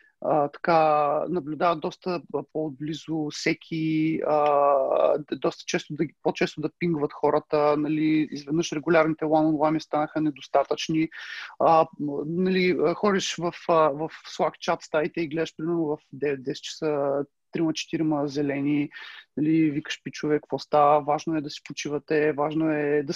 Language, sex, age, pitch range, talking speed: Bulgarian, male, 30-49, 155-185 Hz, 125 wpm